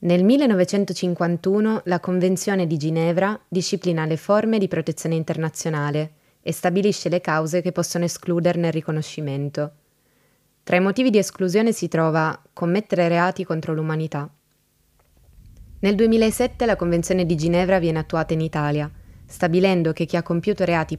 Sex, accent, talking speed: female, native, 135 wpm